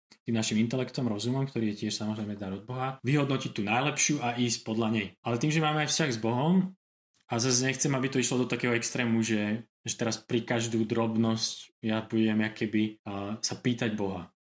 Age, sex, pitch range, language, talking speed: 20-39, male, 110-130 Hz, Czech, 200 wpm